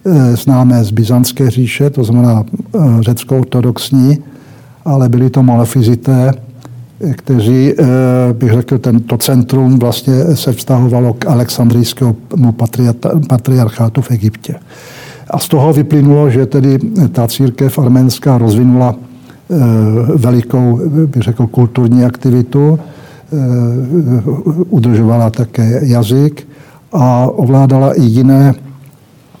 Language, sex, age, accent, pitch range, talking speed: Czech, male, 60-79, native, 120-140 Hz, 95 wpm